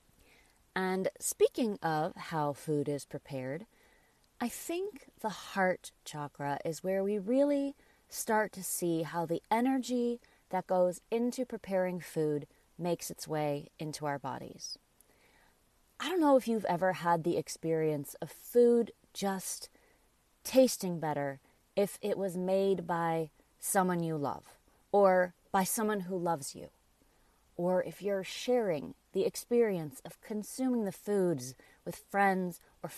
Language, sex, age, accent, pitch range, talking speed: English, female, 30-49, American, 165-220 Hz, 135 wpm